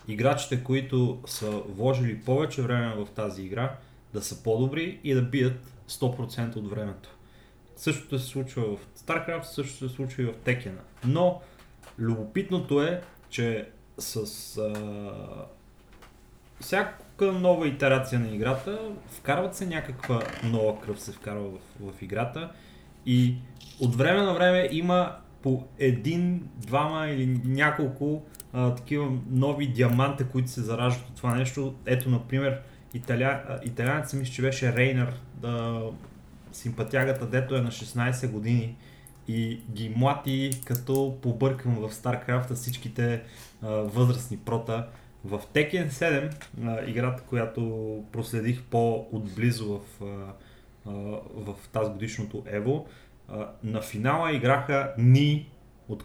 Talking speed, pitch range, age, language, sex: 125 wpm, 115-135 Hz, 30-49, Bulgarian, male